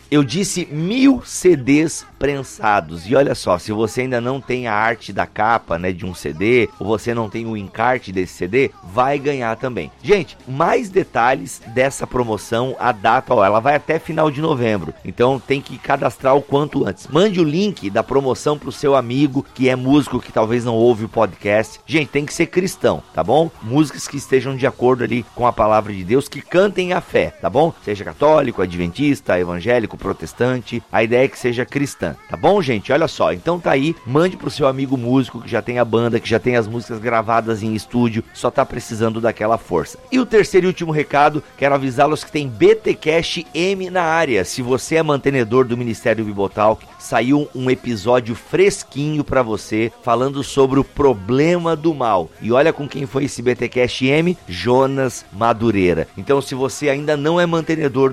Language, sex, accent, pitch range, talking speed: Portuguese, male, Brazilian, 115-145 Hz, 195 wpm